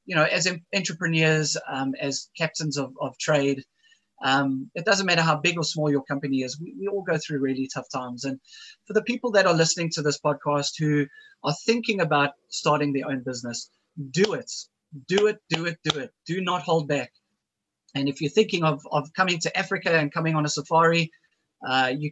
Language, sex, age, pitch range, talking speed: English, male, 20-39, 135-170 Hz, 205 wpm